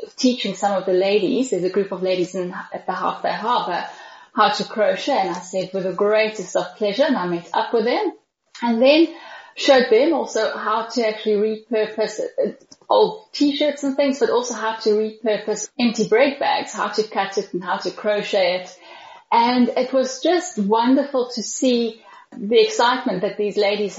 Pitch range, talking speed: 200-260 Hz, 190 wpm